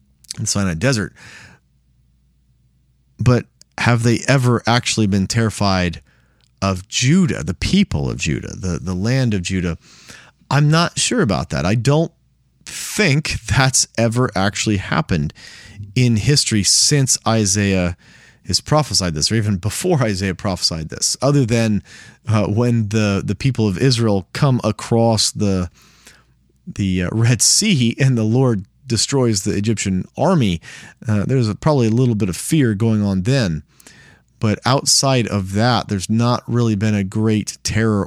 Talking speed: 140 wpm